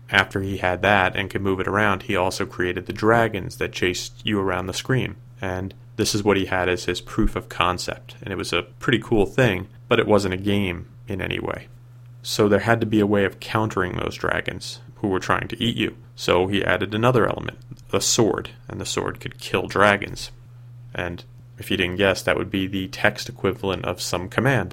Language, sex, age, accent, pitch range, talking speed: English, male, 30-49, American, 95-120 Hz, 220 wpm